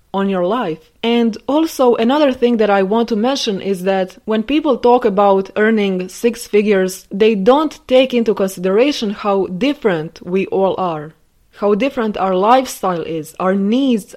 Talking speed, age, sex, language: 160 wpm, 20-39, female, English